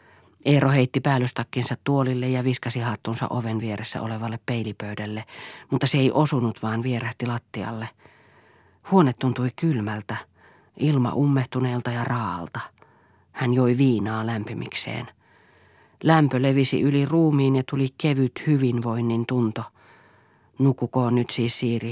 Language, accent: Finnish, native